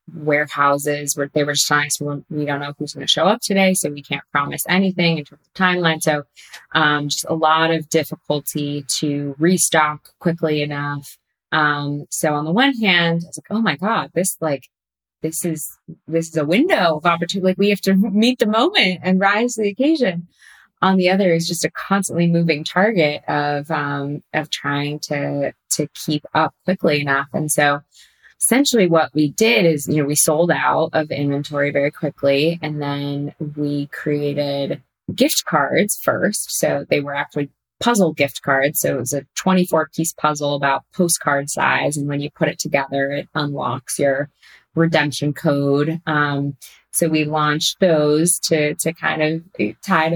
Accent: American